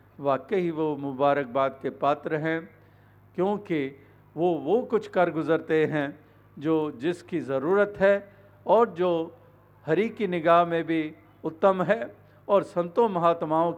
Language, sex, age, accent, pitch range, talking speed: Hindi, male, 50-69, native, 125-155 Hz, 125 wpm